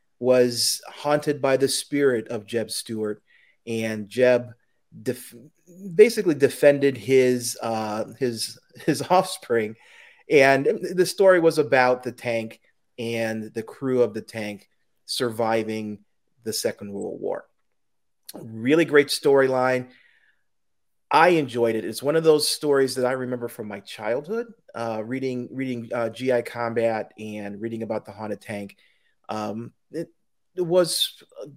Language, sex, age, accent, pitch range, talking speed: English, male, 30-49, American, 115-160 Hz, 135 wpm